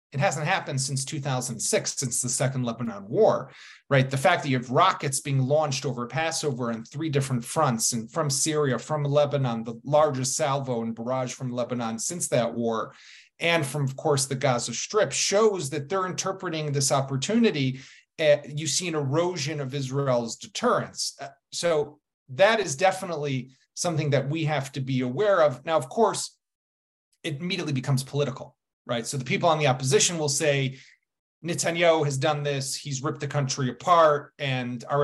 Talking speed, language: 170 wpm, English